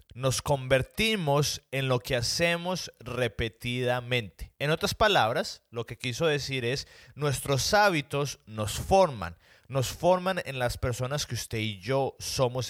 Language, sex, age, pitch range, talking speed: Spanish, male, 30-49, 120-165 Hz, 135 wpm